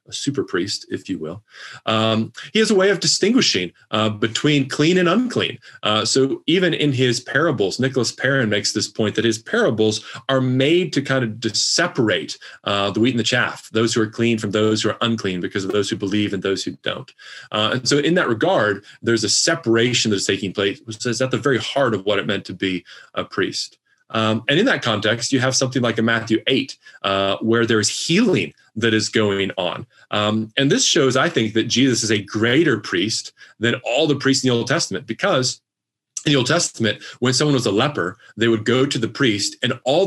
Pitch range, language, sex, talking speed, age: 110-135 Hz, English, male, 220 wpm, 30-49